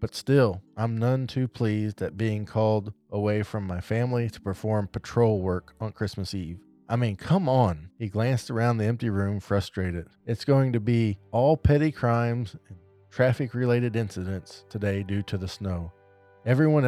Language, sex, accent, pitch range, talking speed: English, male, American, 100-115 Hz, 165 wpm